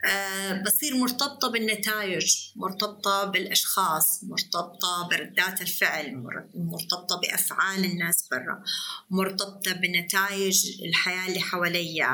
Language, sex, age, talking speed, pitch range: Arabic, female, 30-49, 90 wpm, 180-210 Hz